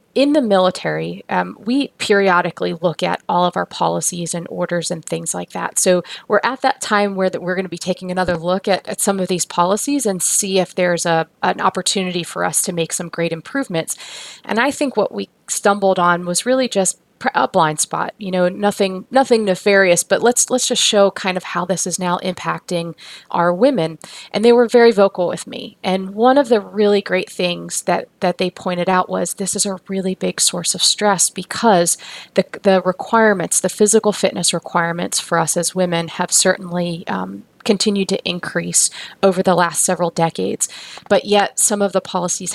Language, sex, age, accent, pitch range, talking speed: English, female, 30-49, American, 175-205 Hz, 195 wpm